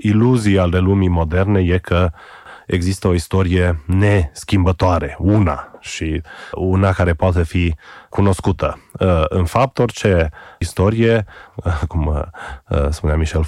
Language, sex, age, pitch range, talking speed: Romanian, male, 30-49, 85-105 Hz, 105 wpm